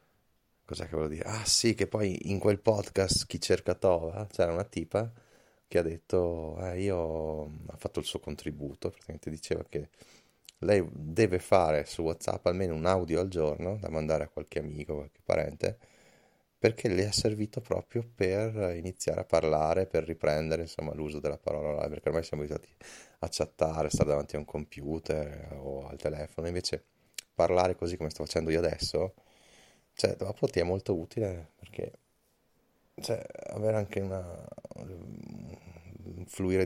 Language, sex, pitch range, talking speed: Italian, male, 80-90 Hz, 165 wpm